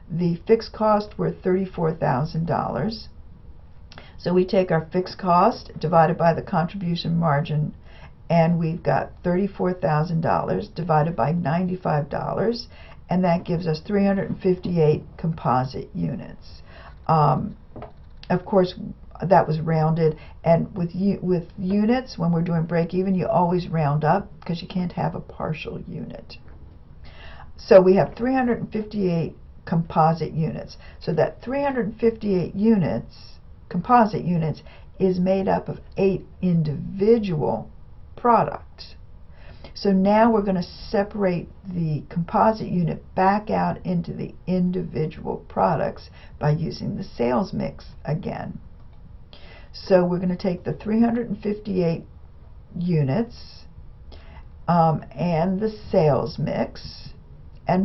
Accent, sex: American, female